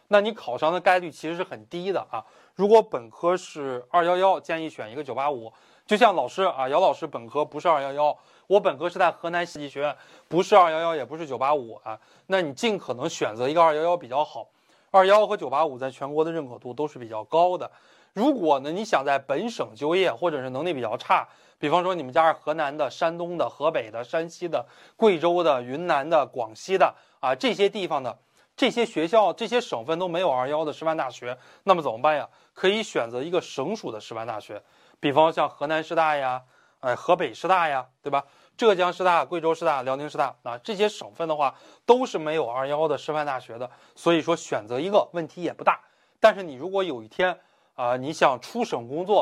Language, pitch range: Chinese, 145-185 Hz